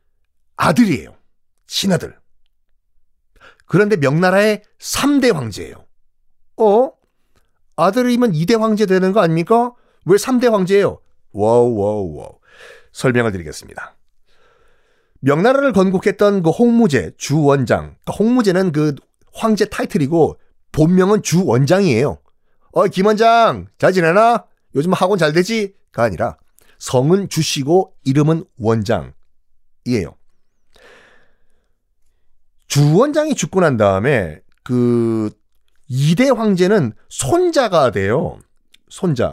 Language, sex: Korean, male